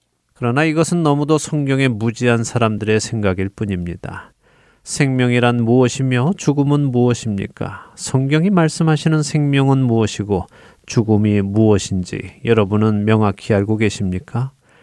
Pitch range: 110-140 Hz